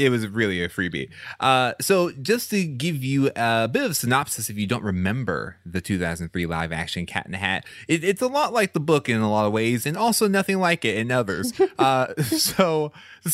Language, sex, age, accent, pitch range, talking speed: English, male, 20-39, American, 100-145 Hz, 215 wpm